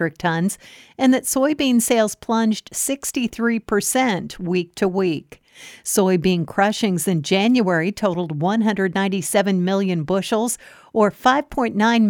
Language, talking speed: English, 105 wpm